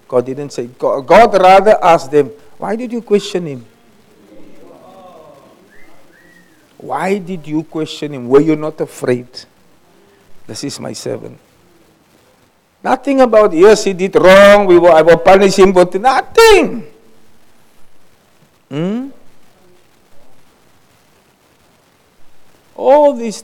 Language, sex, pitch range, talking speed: English, male, 120-190 Hz, 110 wpm